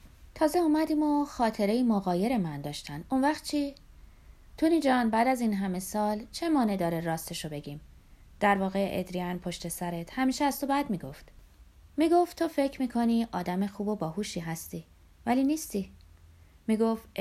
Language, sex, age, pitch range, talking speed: Persian, female, 30-49, 165-235 Hz, 150 wpm